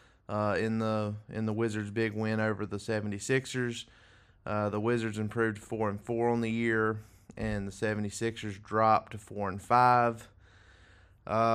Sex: male